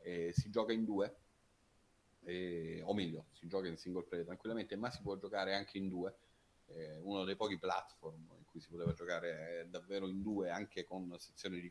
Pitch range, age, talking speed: 90-115 Hz, 40-59, 195 wpm